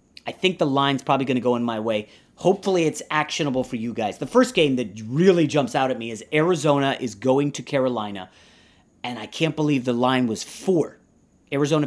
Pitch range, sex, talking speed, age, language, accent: 125-160 Hz, male, 205 wpm, 30-49, English, American